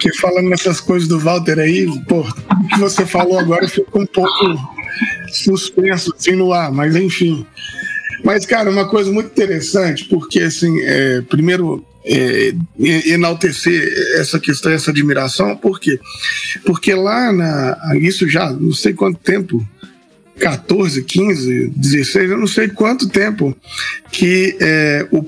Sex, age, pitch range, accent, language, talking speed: male, 20-39, 155-195 Hz, Brazilian, Portuguese, 140 wpm